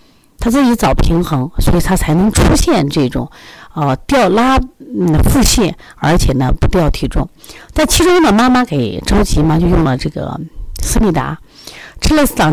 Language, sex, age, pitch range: Chinese, female, 50-69, 145-215 Hz